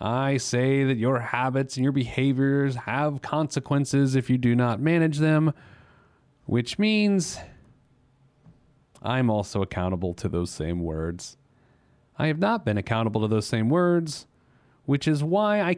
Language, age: English, 30-49